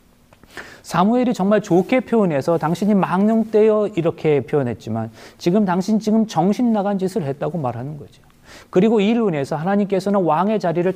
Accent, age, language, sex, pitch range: native, 40-59, Korean, male, 165-230 Hz